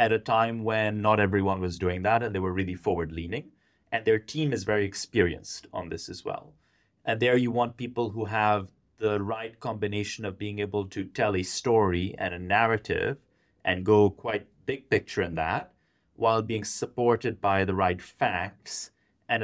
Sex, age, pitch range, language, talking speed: male, 30-49, 95-115 Hz, English, 185 wpm